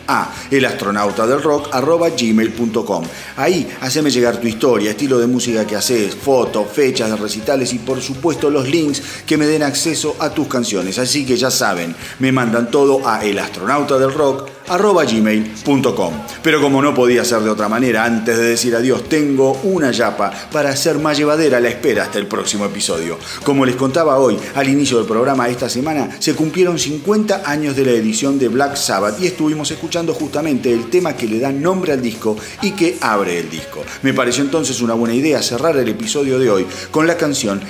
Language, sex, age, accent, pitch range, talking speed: Spanish, male, 40-59, Argentinian, 115-150 Hz, 190 wpm